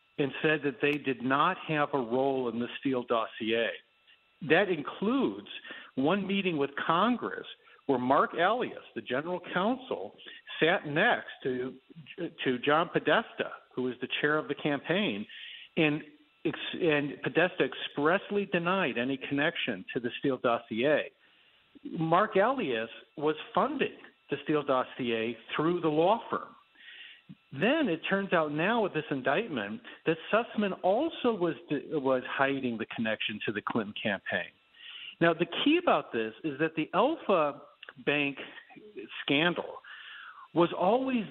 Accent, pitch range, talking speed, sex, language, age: American, 135-185 Hz, 135 wpm, male, English, 50-69